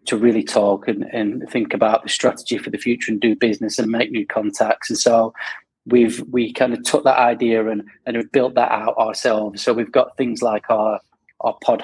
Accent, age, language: British, 20-39, English